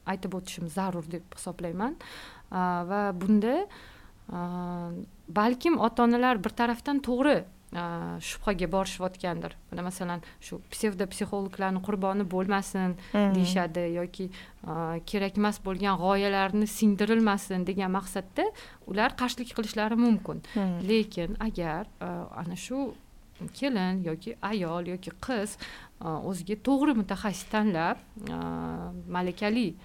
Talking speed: 100 wpm